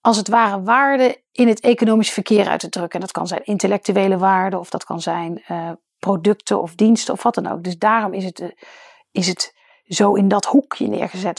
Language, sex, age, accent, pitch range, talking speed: Dutch, female, 40-59, Dutch, 200-275 Hz, 210 wpm